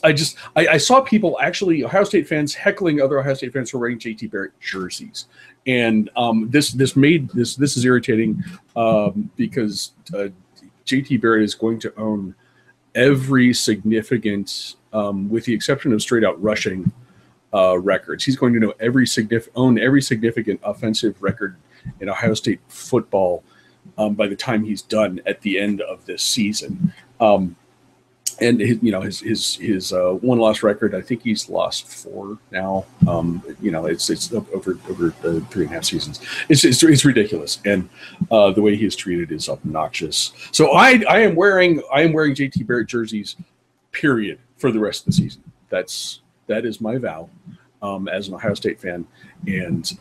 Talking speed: 185 wpm